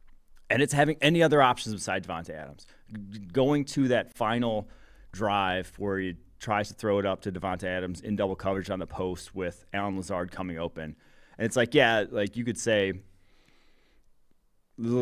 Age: 30-49